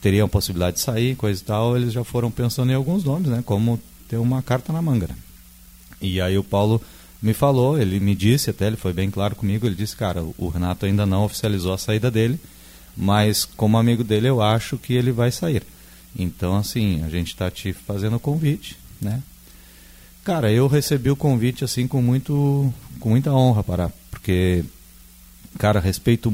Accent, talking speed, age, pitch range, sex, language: Brazilian, 185 wpm, 30-49, 90-115 Hz, male, Portuguese